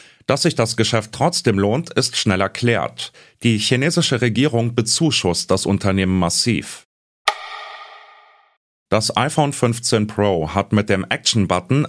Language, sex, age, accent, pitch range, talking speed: German, male, 30-49, German, 100-135 Hz, 120 wpm